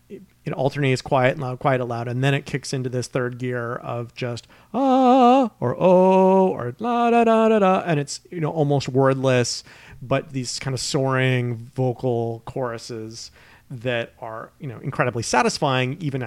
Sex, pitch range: male, 115-135 Hz